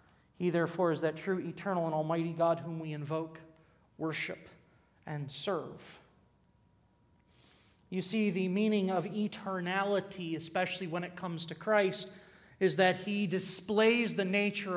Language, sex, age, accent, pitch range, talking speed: English, male, 30-49, American, 175-215 Hz, 135 wpm